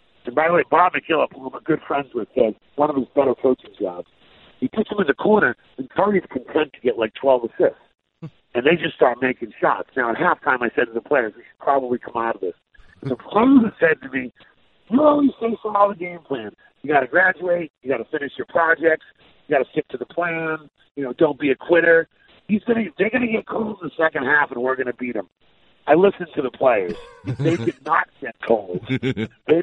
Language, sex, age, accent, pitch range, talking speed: English, male, 50-69, American, 130-185 Hz, 240 wpm